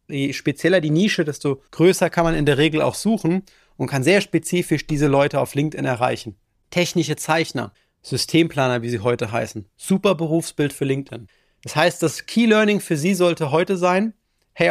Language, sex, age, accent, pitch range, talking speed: German, male, 30-49, German, 140-180 Hz, 175 wpm